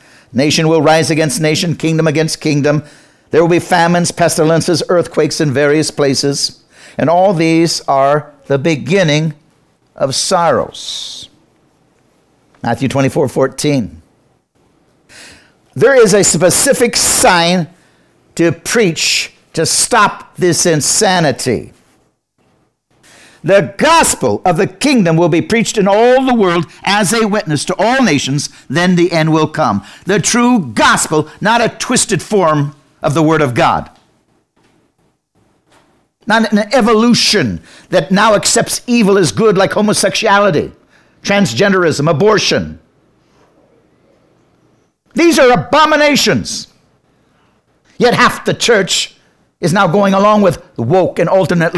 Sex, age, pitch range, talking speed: male, 60-79, 155-210 Hz, 120 wpm